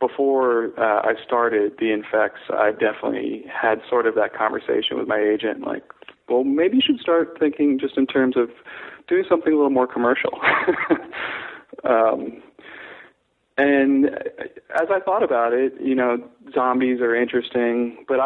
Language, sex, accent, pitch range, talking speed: English, male, American, 110-160 Hz, 150 wpm